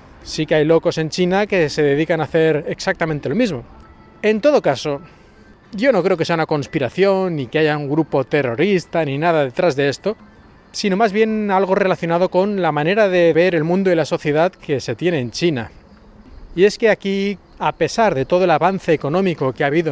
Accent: Spanish